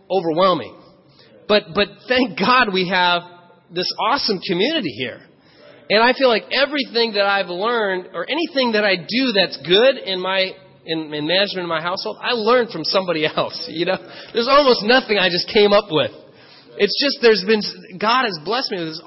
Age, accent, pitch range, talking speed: 30-49, American, 180-235 Hz, 185 wpm